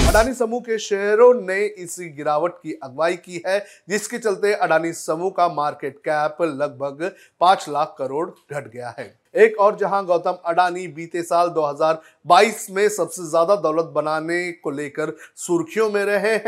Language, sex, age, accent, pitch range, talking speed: Hindi, male, 30-49, native, 150-185 Hz, 60 wpm